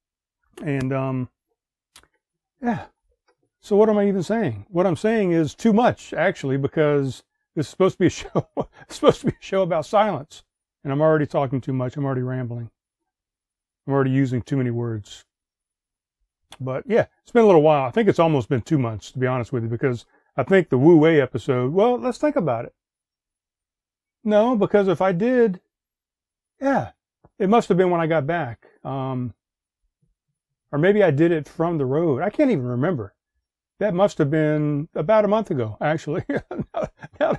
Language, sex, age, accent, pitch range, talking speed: English, male, 40-59, American, 130-175 Hz, 185 wpm